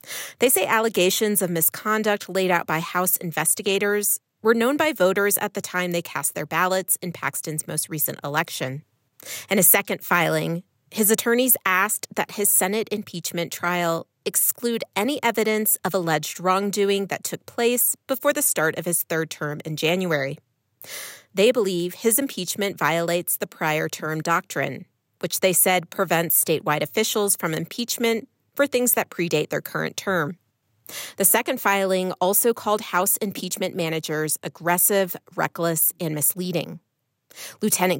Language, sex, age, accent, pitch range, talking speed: English, female, 30-49, American, 160-205 Hz, 145 wpm